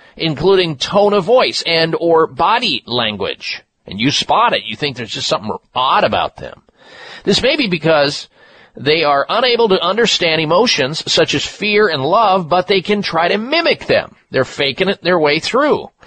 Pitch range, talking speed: 135-190 Hz, 180 wpm